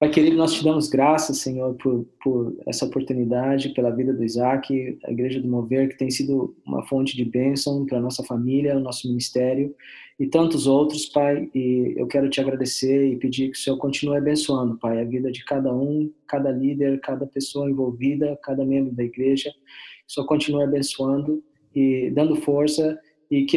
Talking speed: 185 wpm